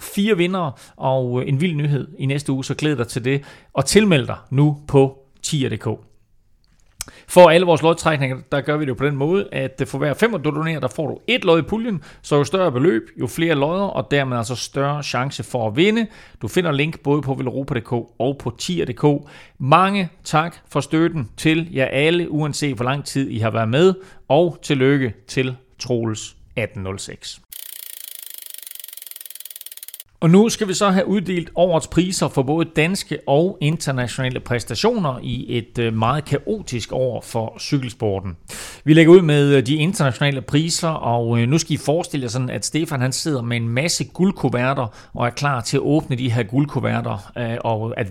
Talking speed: 175 wpm